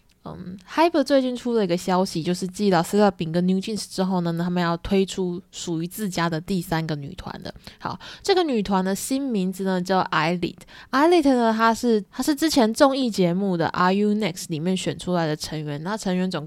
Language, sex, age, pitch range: Chinese, female, 20-39, 175-220 Hz